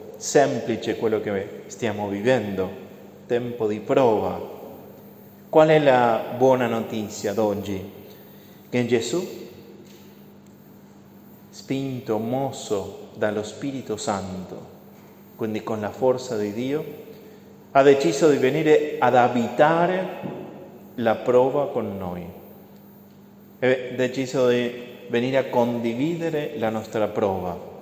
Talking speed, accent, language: 100 wpm, Argentinian, Italian